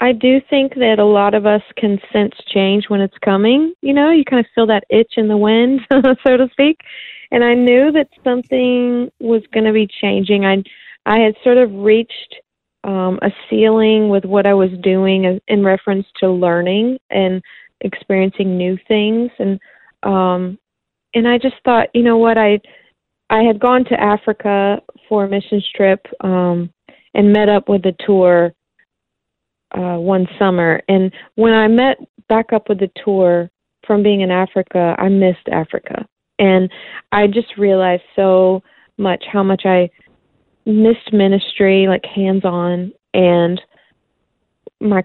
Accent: American